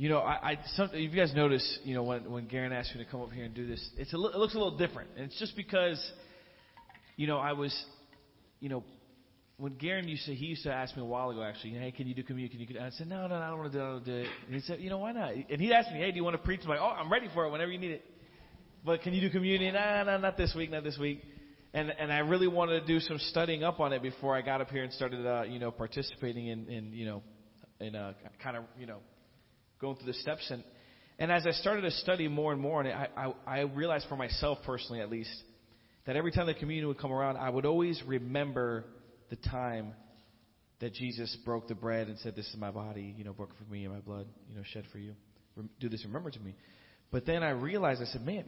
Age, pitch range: 30-49, 120-160 Hz